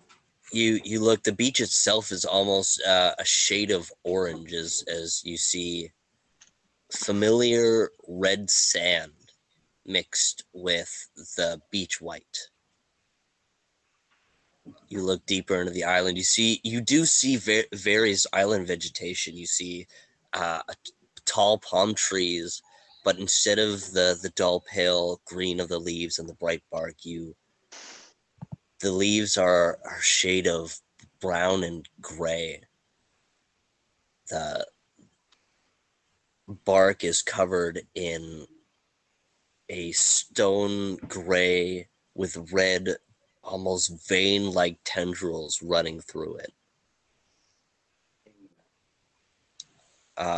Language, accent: English, American